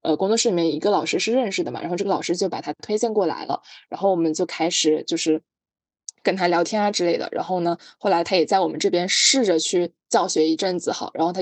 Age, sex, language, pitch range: 20-39, female, Chinese, 165-200 Hz